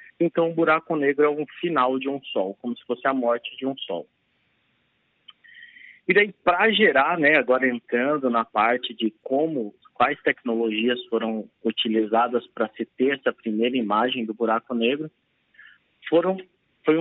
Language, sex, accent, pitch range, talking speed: Portuguese, male, Brazilian, 120-160 Hz, 150 wpm